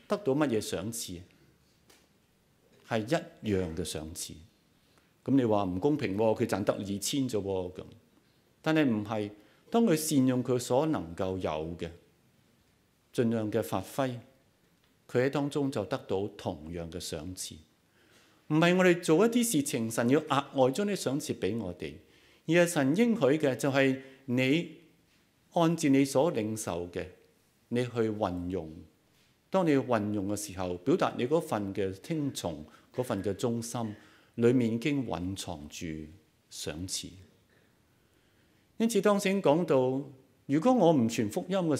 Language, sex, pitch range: Chinese, male, 95-150 Hz